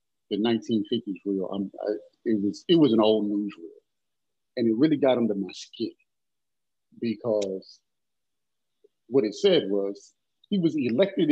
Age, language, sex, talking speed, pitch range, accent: 50-69, English, male, 140 wpm, 105-135 Hz, American